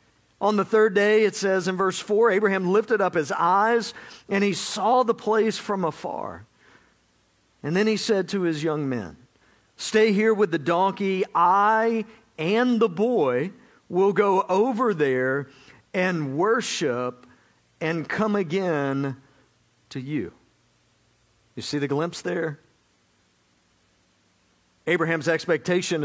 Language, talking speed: English, 130 wpm